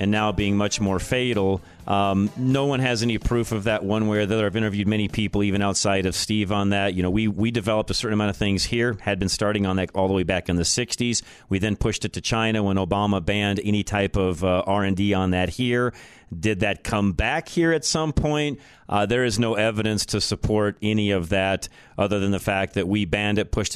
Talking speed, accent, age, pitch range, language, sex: 240 wpm, American, 40-59, 95-115 Hz, English, male